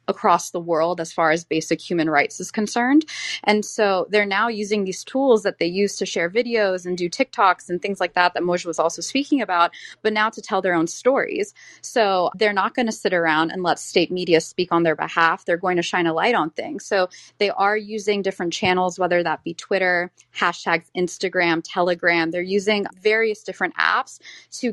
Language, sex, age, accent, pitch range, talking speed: English, female, 20-39, American, 170-200 Hz, 210 wpm